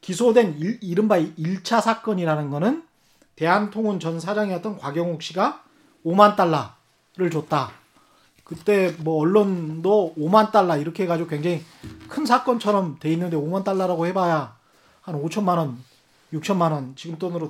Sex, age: male, 40-59